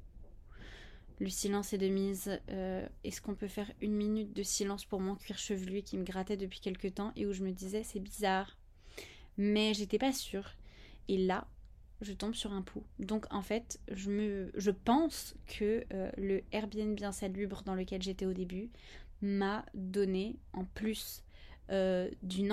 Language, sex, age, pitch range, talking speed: French, female, 20-39, 195-230 Hz, 170 wpm